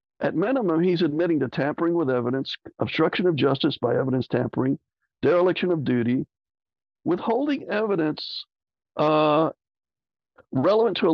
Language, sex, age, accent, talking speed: English, male, 60-79, American, 125 wpm